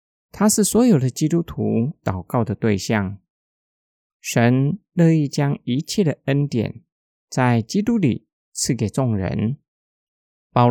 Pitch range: 110-170 Hz